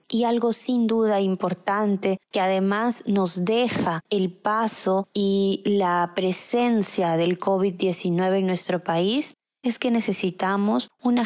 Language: Spanish